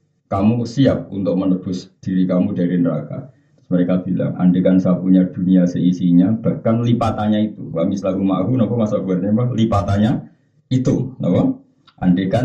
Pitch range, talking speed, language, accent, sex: 95-140 Hz, 110 wpm, Indonesian, native, male